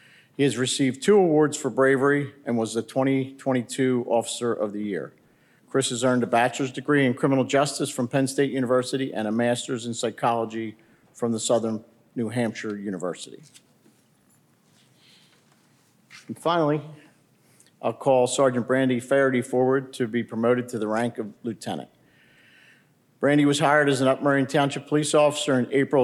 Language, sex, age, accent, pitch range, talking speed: English, male, 50-69, American, 115-140 Hz, 150 wpm